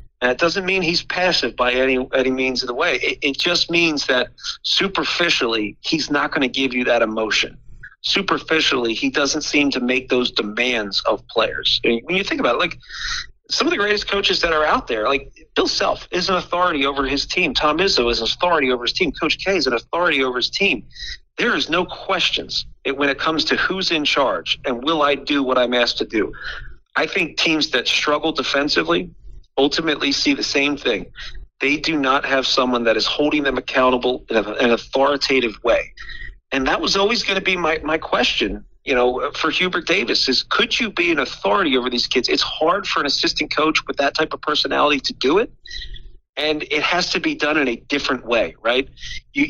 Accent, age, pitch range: American, 40-59, 125-165 Hz